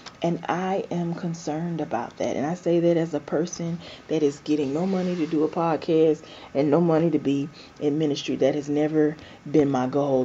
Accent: American